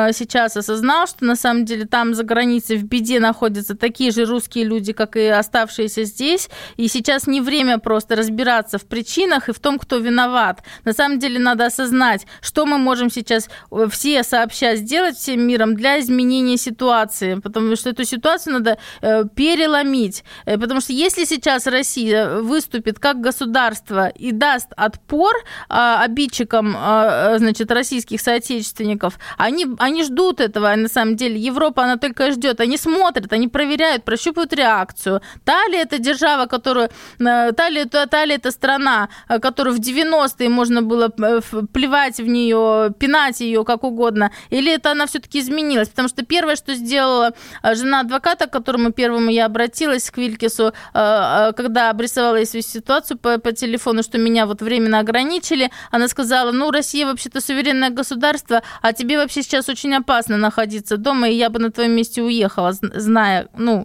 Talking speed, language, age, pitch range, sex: 155 wpm, Russian, 20-39, 225-275 Hz, female